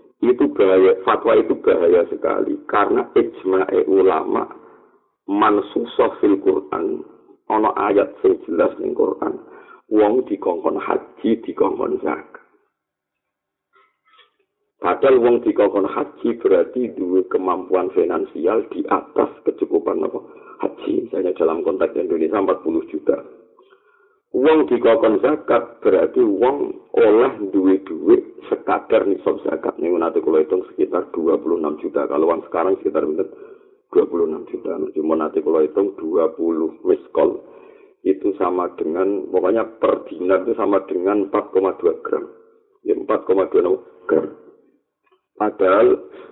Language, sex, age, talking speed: Indonesian, male, 50-69, 120 wpm